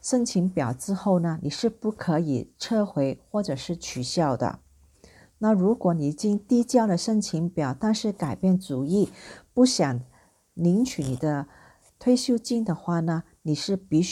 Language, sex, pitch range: English, female, 150-215 Hz